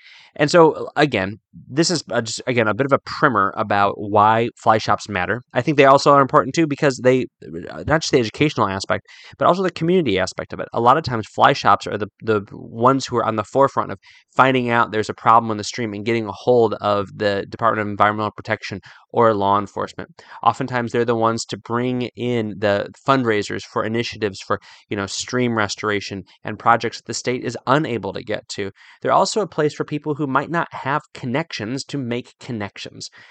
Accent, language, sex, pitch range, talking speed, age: American, English, male, 105-130 Hz, 205 wpm, 20-39